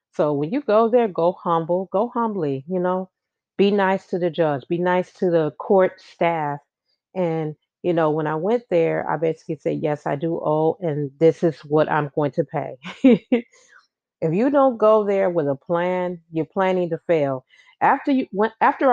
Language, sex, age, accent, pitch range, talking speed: English, female, 40-59, American, 150-180 Hz, 190 wpm